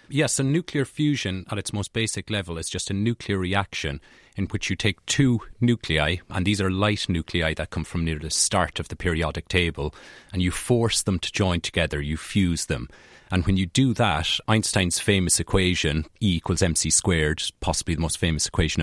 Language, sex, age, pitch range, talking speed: English, male, 30-49, 80-100 Hz, 200 wpm